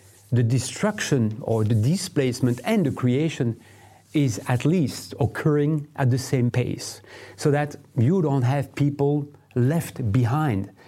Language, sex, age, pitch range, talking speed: English, male, 40-59, 120-150 Hz, 130 wpm